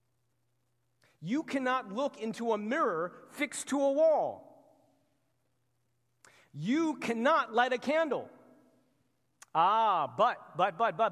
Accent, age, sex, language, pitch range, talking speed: American, 30-49, male, English, 155-245 Hz, 110 wpm